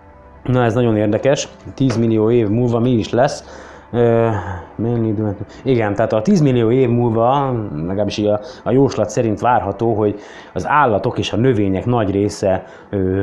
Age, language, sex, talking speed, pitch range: 20-39, Hungarian, male, 165 wpm, 105-120 Hz